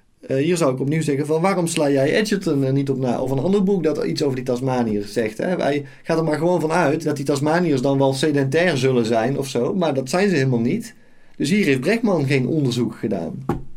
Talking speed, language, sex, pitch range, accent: 240 wpm, Dutch, male, 110-140 Hz, Dutch